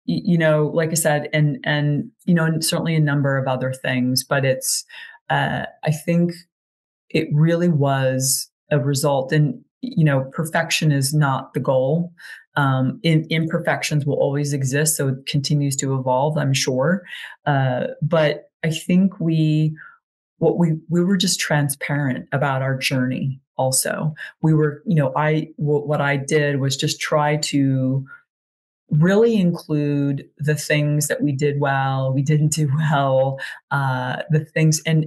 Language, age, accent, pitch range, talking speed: English, 30-49, American, 135-155 Hz, 150 wpm